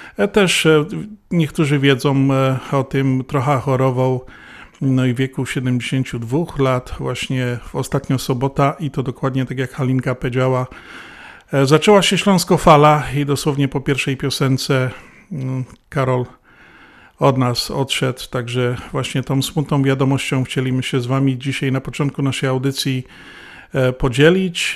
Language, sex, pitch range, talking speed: Polish, male, 130-150 Hz, 125 wpm